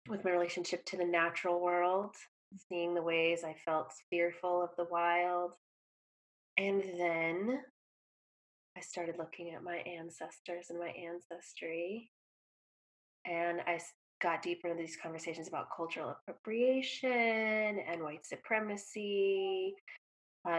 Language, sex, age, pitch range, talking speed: English, female, 20-39, 160-180 Hz, 120 wpm